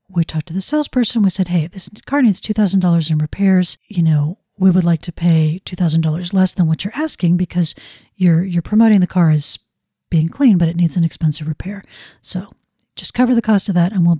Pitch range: 170-210 Hz